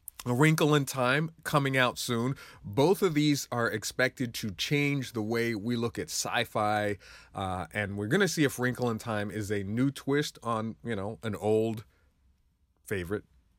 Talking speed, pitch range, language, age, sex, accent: 175 wpm, 100-130 Hz, English, 30-49, male, American